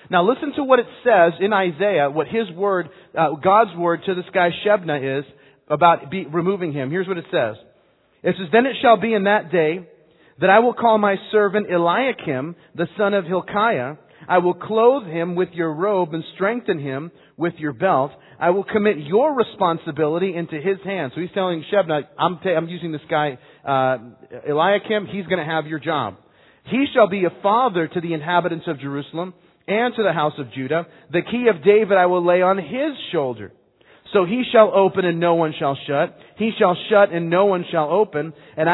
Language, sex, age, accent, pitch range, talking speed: English, male, 40-59, American, 155-200 Hz, 200 wpm